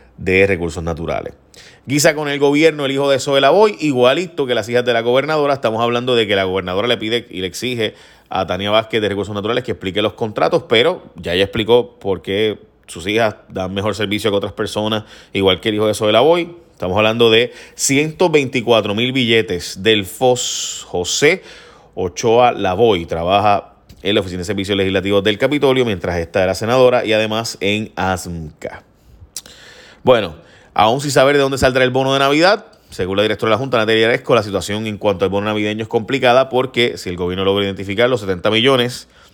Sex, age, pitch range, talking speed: male, 30-49, 95-125 Hz, 190 wpm